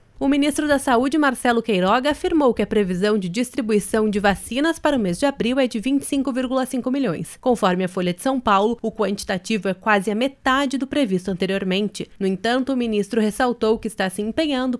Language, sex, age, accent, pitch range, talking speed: Portuguese, female, 20-39, Brazilian, 195-265 Hz, 190 wpm